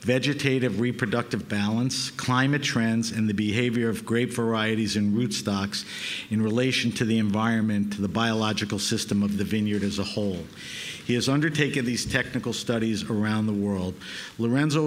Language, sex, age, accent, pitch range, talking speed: English, male, 50-69, American, 105-125 Hz, 155 wpm